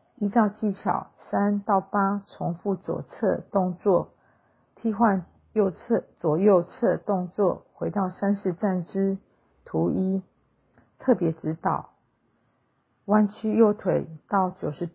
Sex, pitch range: female, 165-205 Hz